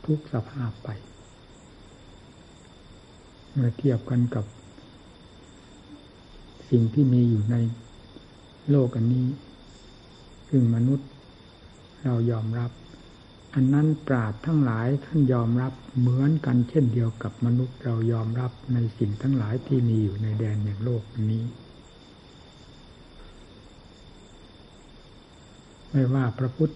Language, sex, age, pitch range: Thai, male, 60-79, 115-135 Hz